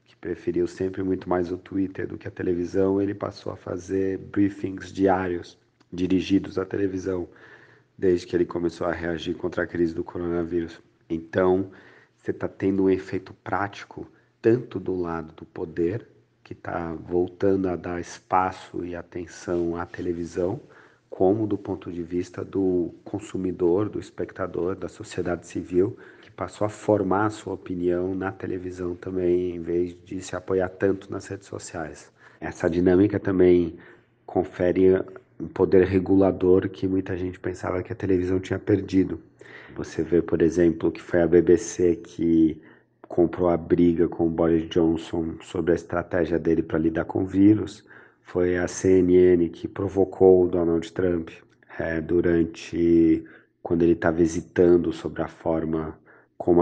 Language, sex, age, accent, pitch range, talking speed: Portuguese, male, 40-59, Brazilian, 85-95 Hz, 150 wpm